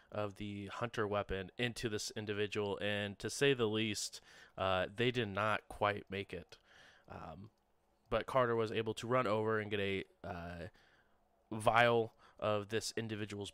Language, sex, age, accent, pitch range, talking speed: English, male, 30-49, American, 105-125 Hz, 155 wpm